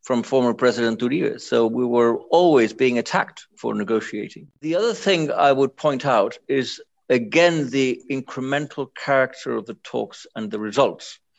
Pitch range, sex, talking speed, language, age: 125-160 Hz, male, 160 wpm, English, 50-69